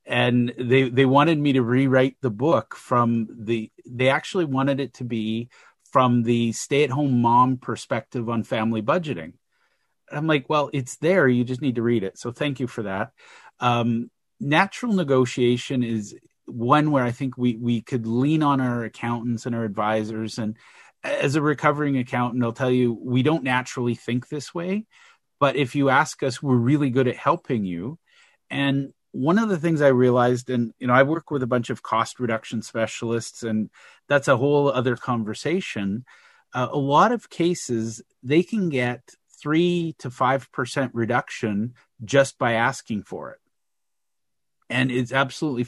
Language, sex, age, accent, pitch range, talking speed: English, male, 40-59, American, 120-140 Hz, 175 wpm